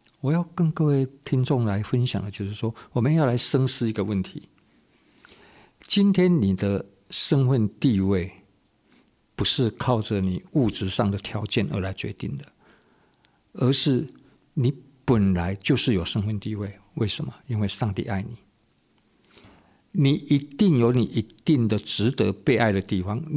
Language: Chinese